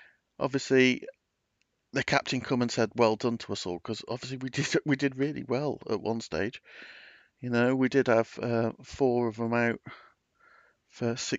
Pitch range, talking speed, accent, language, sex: 110-140 Hz, 175 wpm, British, English, male